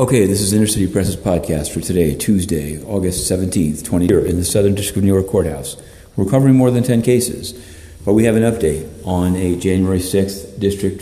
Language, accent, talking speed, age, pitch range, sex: English, American, 195 wpm, 40-59, 90-105 Hz, male